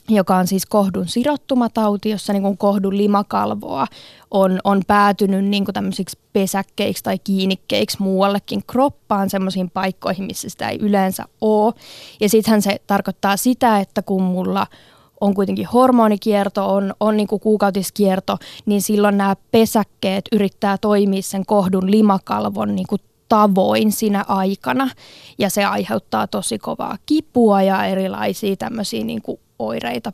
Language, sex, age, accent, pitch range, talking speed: Finnish, female, 20-39, native, 195-225 Hz, 125 wpm